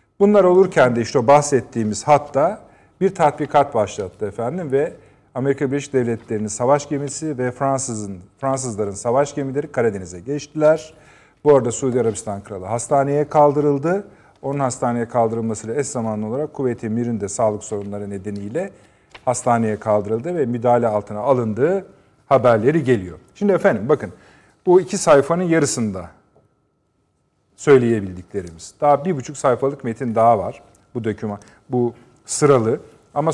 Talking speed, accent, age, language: 125 wpm, native, 40-59, Turkish